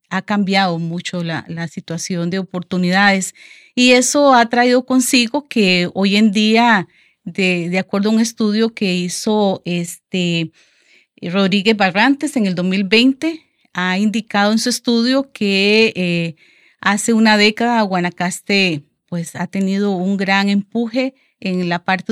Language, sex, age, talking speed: Spanish, female, 40-59, 135 wpm